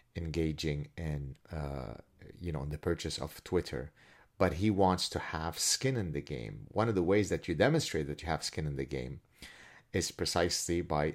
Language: English